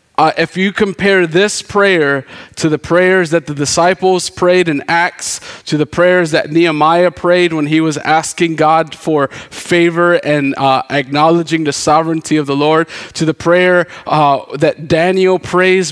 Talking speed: 160 wpm